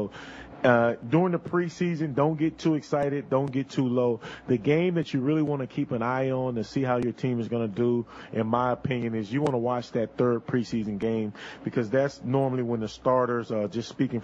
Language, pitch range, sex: English, 115-140 Hz, male